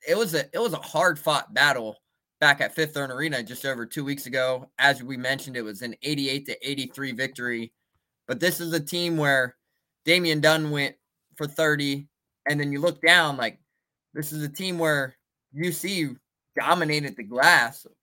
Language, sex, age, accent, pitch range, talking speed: English, male, 20-39, American, 130-155 Hz, 185 wpm